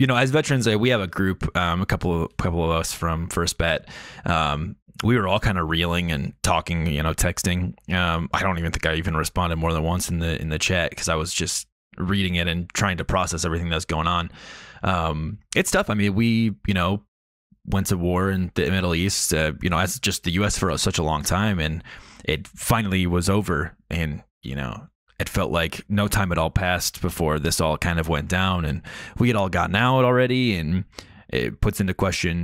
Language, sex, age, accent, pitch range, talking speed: English, male, 20-39, American, 80-100 Hz, 230 wpm